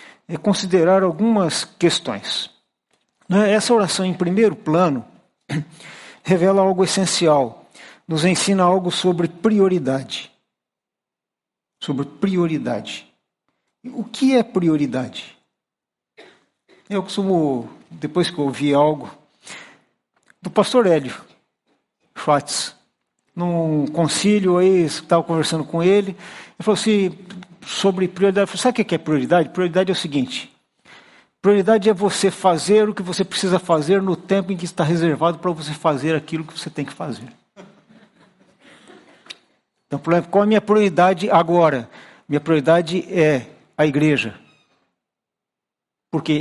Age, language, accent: 60-79, Portuguese, Brazilian